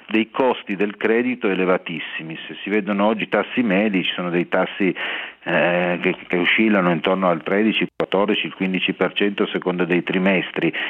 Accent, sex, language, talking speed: native, male, Italian, 160 wpm